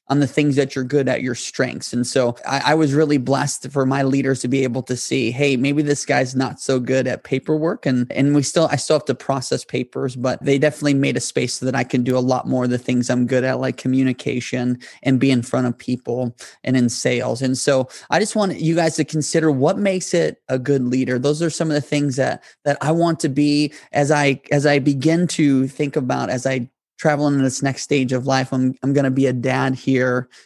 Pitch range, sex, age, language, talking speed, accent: 130-145 Hz, male, 20-39, English, 250 wpm, American